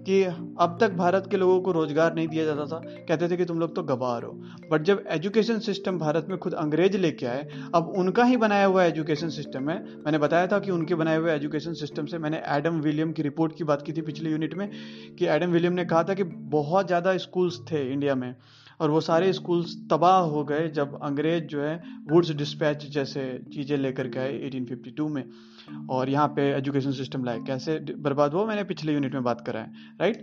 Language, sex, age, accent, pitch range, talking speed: Hindi, male, 30-49, native, 145-190 Hz, 195 wpm